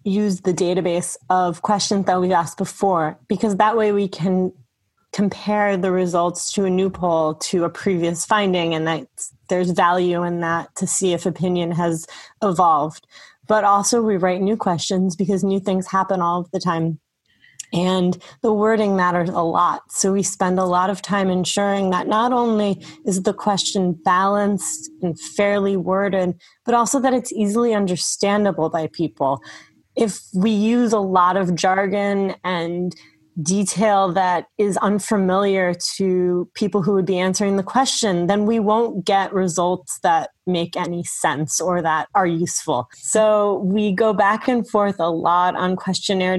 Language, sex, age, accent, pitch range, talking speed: English, female, 30-49, American, 175-205 Hz, 165 wpm